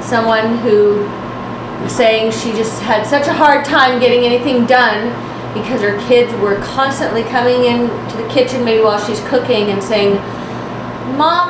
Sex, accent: female, American